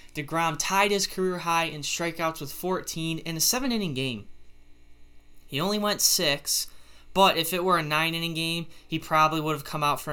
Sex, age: male, 10-29